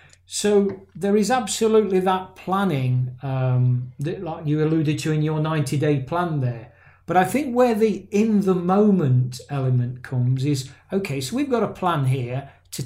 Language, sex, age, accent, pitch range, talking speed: English, male, 40-59, British, 140-185 Hz, 175 wpm